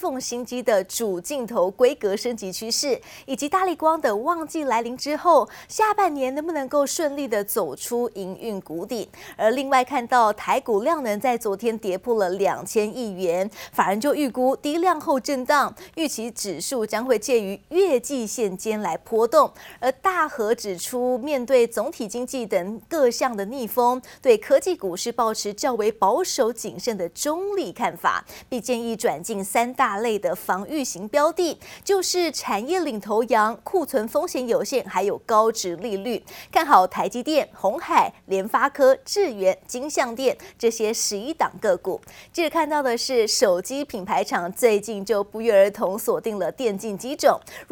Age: 20-39